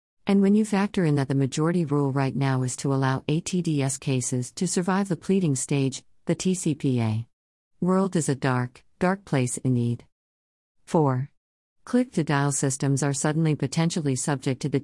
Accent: American